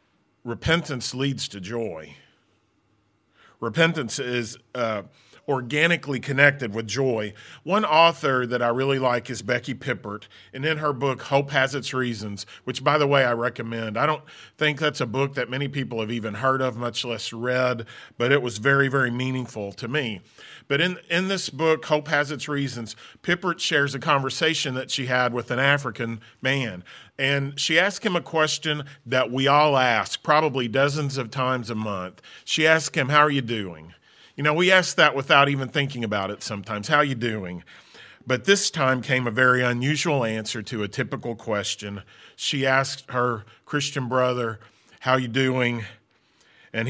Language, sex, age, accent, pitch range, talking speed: English, male, 40-59, American, 115-145 Hz, 175 wpm